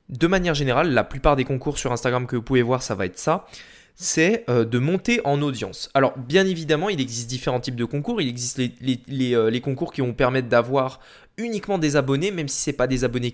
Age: 20-39